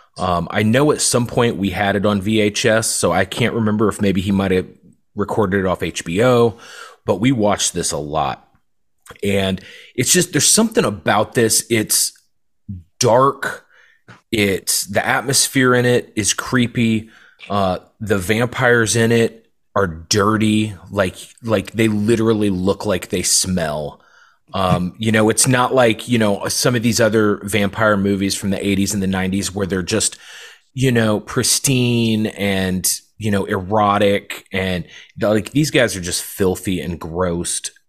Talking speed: 160 wpm